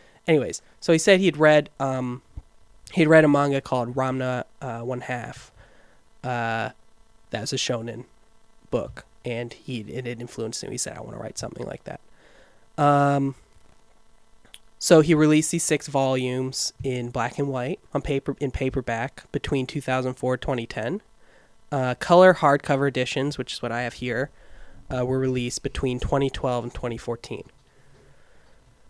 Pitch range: 120-140 Hz